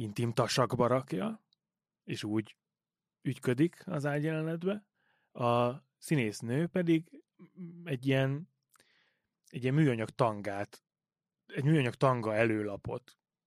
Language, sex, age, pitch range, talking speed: Hungarian, male, 30-49, 110-140 Hz, 85 wpm